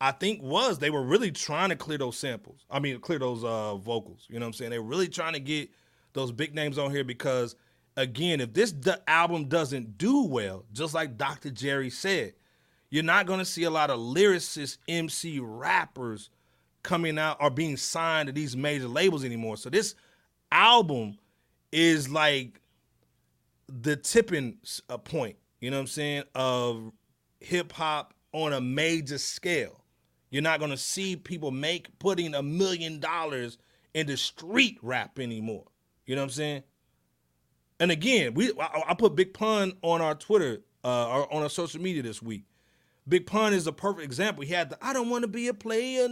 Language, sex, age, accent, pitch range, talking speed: English, male, 30-49, American, 130-190 Hz, 180 wpm